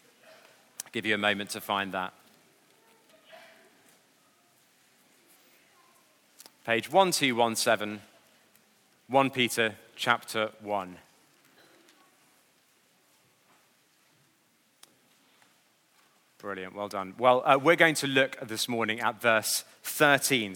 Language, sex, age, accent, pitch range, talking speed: English, male, 30-49, British, 115-175 Hz, 80 wpm